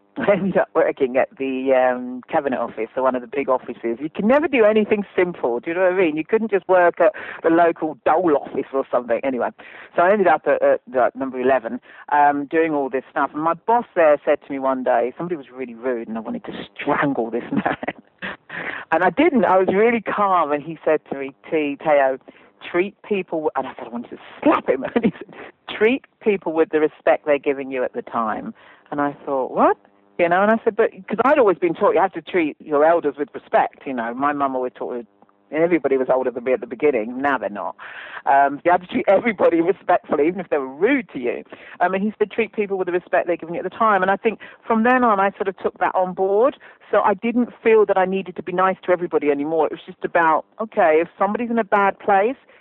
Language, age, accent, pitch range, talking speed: English, 40-59, British, 140-200 Hz, 250 wpm